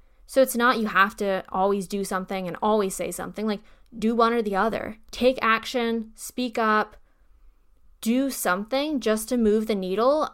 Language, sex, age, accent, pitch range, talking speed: English, female, 10-29, American, 190-235 Hz, 175 wpm